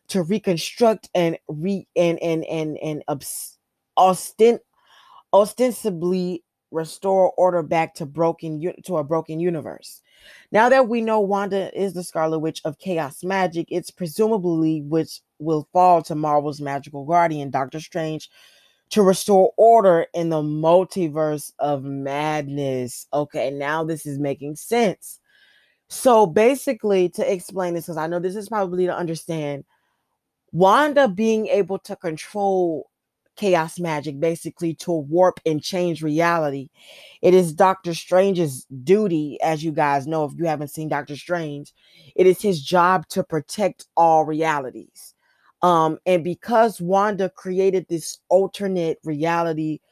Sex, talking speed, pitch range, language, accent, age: female, 135 wpm, 155-195 Hz, English, American, 20-39